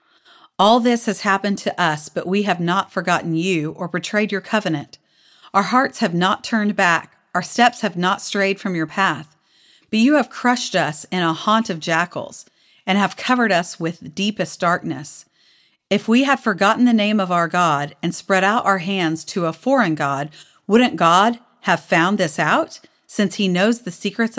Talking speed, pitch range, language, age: 190 wpm, 170-230 Hz, English, 40-59